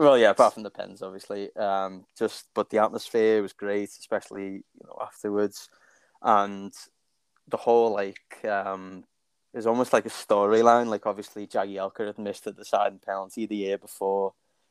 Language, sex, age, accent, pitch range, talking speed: English, male, 10-29, British, 95-105 Hz, 165 wpm